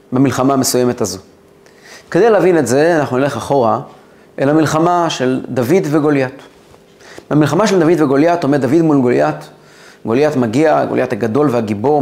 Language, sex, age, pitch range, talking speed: Hebrew, male, 30-49, 120-155 Hz, 140 wpm